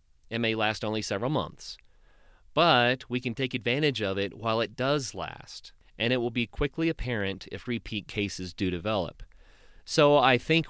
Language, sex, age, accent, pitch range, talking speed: English, male, 40-59, American, 105-135 Hz, 175 wpm